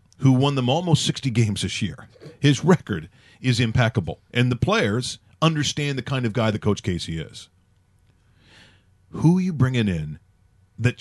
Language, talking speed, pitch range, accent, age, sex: English, 165 wpm, 105-125 Hz, American, 40-59, male